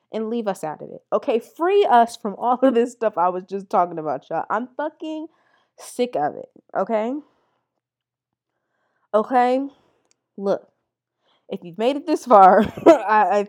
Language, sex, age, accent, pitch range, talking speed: English, female, 20-39, American, 175-260 Hz, 160 wpm